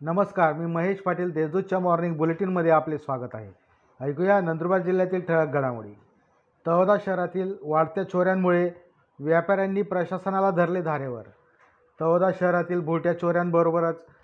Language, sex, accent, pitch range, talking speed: Marathi, male, native, 165-185 Hz, 115 wpm